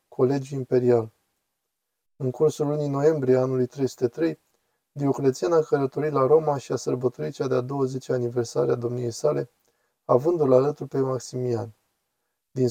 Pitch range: 125-150 Hz